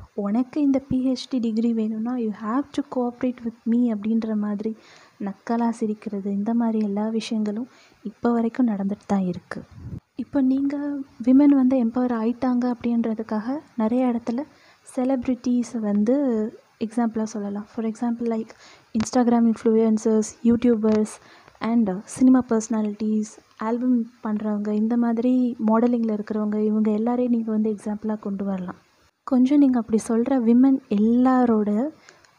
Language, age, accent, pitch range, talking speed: Tamil, 20-39, native, 215-250 Hz, 120 wpm